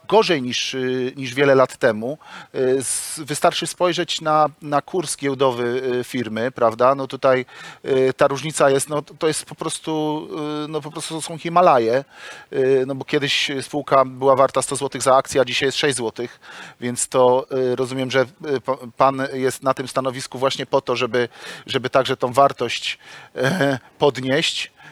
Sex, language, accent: male, Polish, native